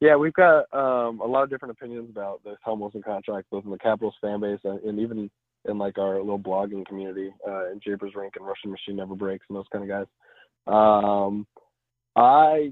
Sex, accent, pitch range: male, American, 100-115 Hz